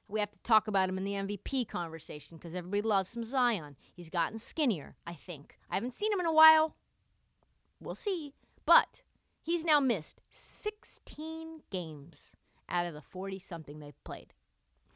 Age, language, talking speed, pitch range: 30-49, English, 165 wpm, 190-295 Hz